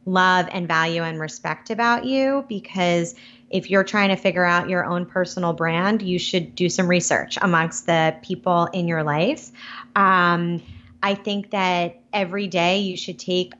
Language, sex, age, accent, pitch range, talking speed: English, female, 30-49, American, 170-205 Hz, 170 wpm